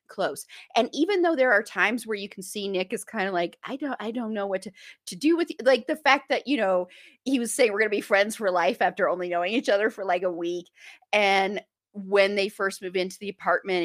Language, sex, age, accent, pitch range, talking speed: English, female, 30-49, American, 190-290 Hz, 250 wpm